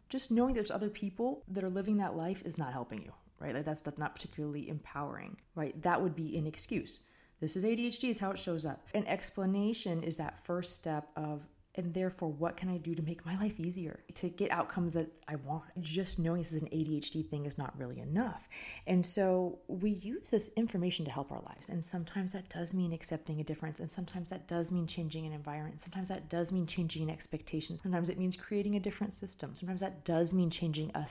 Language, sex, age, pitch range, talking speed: English, female, 30-49, 160-200 Hz, 220 wpm